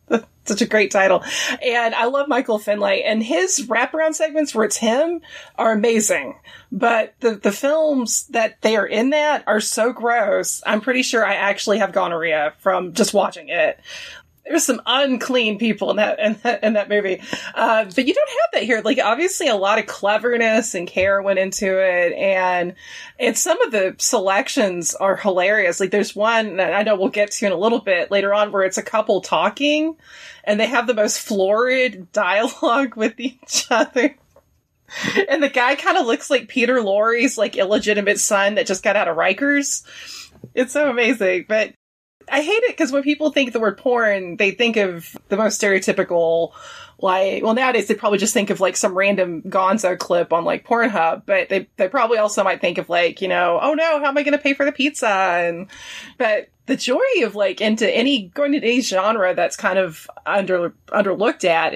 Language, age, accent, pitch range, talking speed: English, 20-39, American, 195-265 Hz, 195 wpm